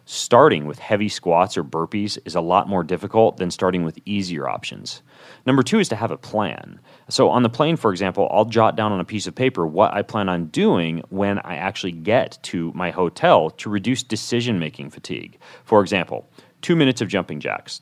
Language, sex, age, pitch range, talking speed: English, male, 30-49, 90-110 Hz, 200 wpm